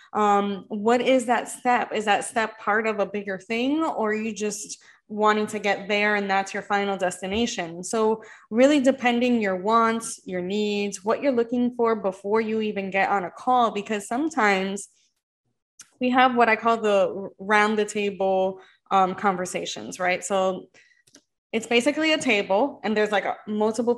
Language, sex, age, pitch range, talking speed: English, female, 20-39, 195-235 Hz, 170 wpm